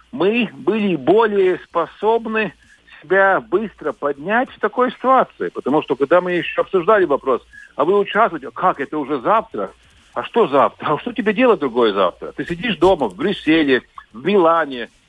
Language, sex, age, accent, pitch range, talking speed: Russian, male, 60-79, native, 155-245 Hz, 160 wpm